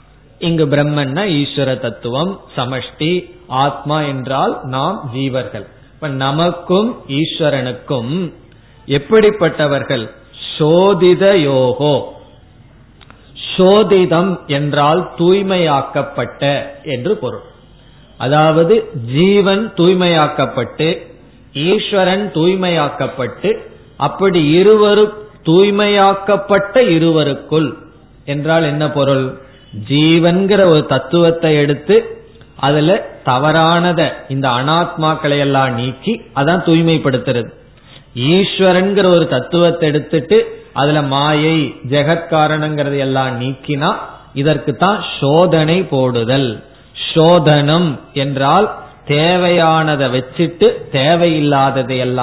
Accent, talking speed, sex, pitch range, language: native, 65 wpm, male, 135-175 Hz, Tamil